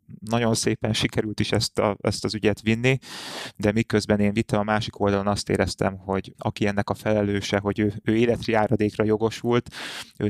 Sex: male